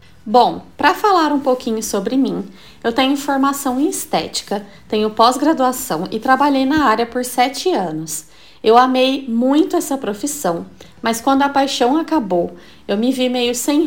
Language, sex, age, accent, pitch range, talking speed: Portuguese, female, 20-39, Brazilian, 210-295 Hz, 155 wpm